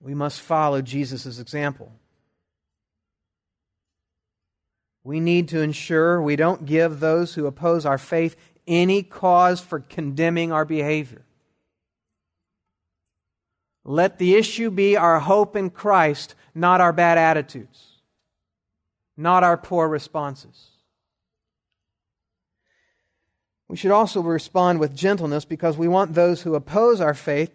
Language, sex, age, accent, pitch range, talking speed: English, male, 50-69, American, 120-180 Hz, 115 wpm